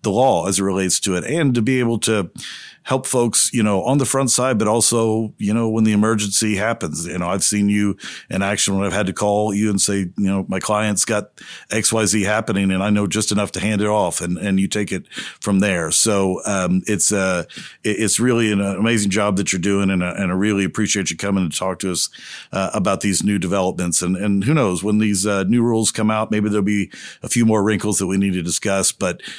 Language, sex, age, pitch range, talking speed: English, male, 50-69, 100-115 Hz, 245 wpm